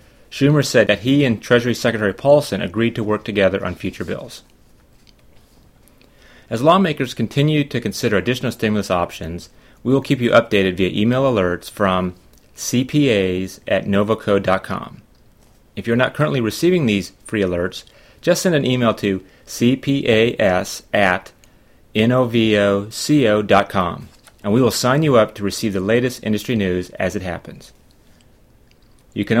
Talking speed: 140 wpm